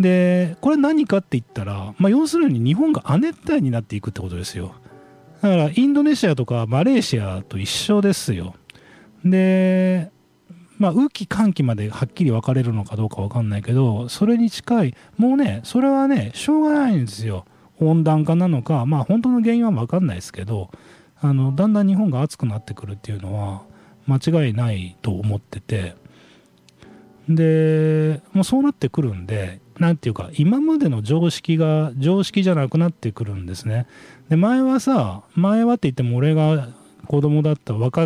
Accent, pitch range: native, 110-180 Hz